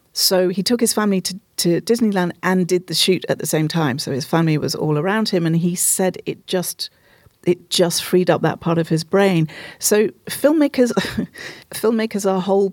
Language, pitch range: English, 160-195 Hz